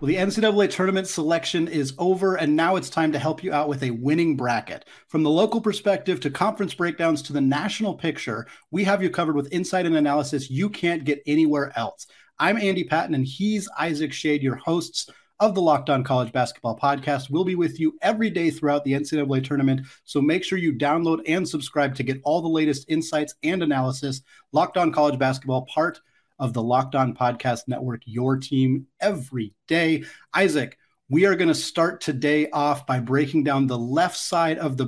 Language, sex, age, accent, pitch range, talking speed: English, male, 30-49, American, 135-165 Hz, 200 wpm